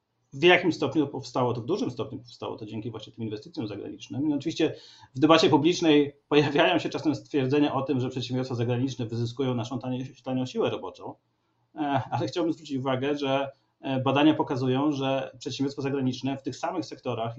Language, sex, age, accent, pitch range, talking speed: Polish, male, 40-59, native, 120-140 Hz, 165 wpm